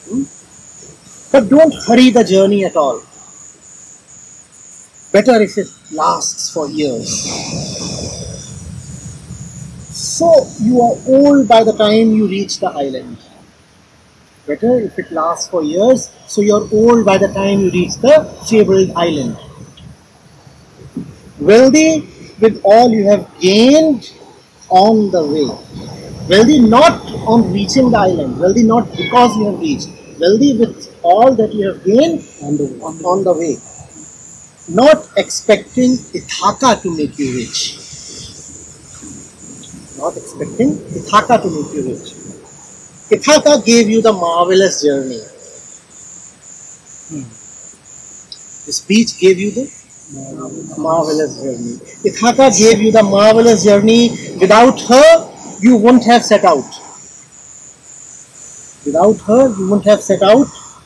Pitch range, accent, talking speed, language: 180-245 Hz, Indian, 120 wpm, English